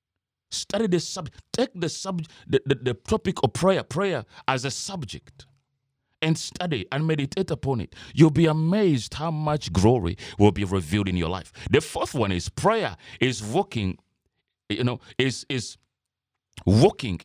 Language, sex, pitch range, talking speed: English, male, 115-170 Hz, 160 wpm